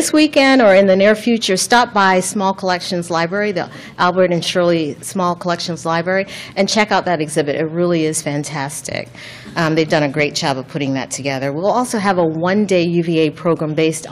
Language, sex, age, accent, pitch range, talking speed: English, female, 40-59, American, 145-195 Hz, 190 wpm